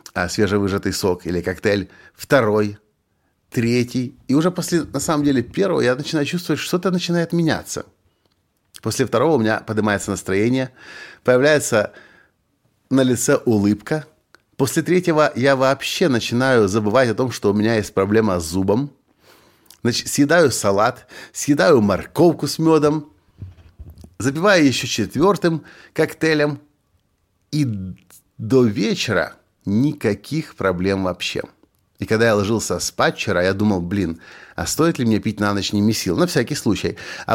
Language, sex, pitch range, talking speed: Russian, male, 95-135 Hz, 135 wpm